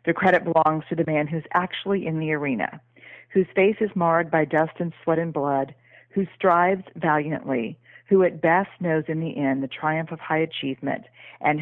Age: 40-59